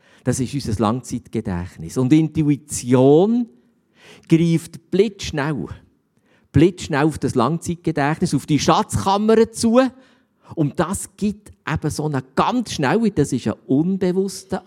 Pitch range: 140-195 Hz